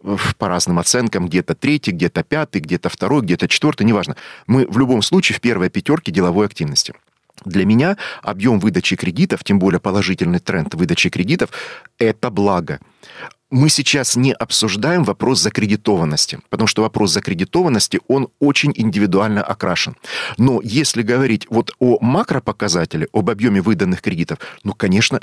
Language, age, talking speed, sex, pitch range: Russian, 40-59, 145 wpm, male, 100-130 Hz